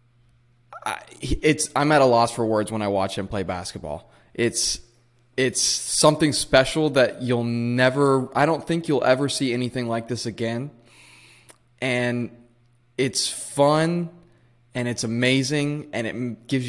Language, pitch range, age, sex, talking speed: English, 115-135 Hz, 20-39, male, 145 wpm